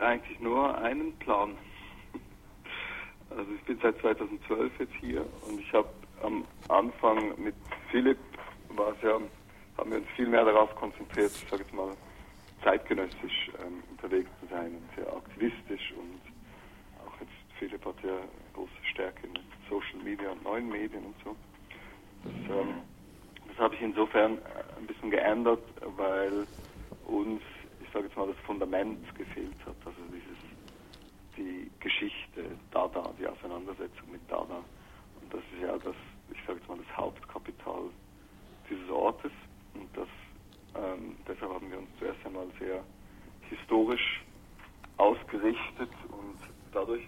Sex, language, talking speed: male, German, 140 wpm